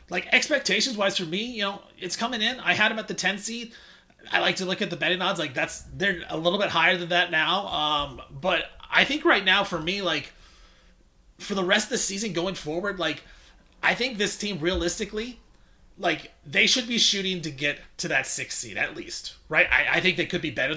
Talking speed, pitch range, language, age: 225 wpm, 150-190 Hz, English, 30-49